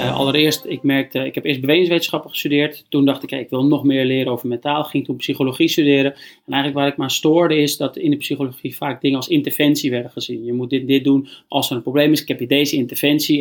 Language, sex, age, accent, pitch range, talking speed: Dutch, male, 30-49, Dutch, 130-150 Hz, 250 wpm